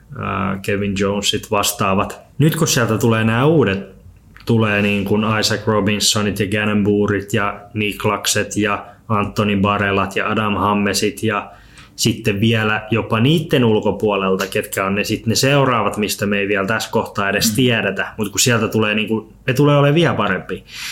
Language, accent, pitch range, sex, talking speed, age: Finnish, native, 100-120 Hz, male, 160 wpm, 20-39